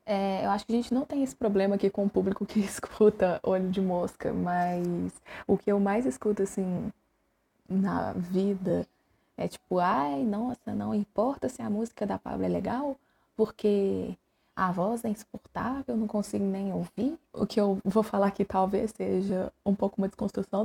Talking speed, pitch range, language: 180 wpm, 190-210 Hz, Portuguese